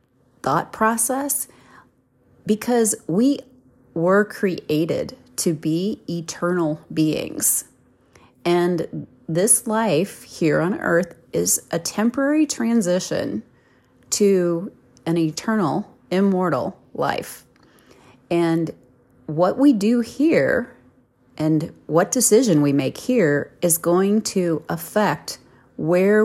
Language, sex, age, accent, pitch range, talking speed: English, female, 30-49, American, 150-205 Hz, 95 wpm